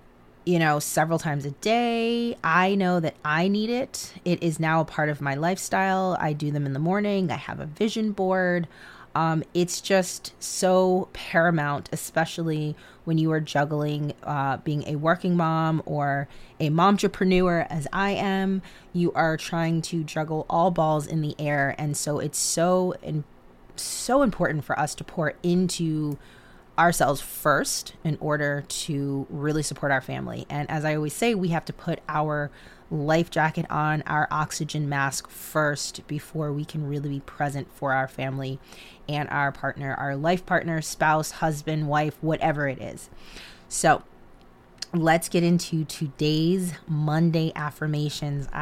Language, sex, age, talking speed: English, female, 30-49, 160 wpm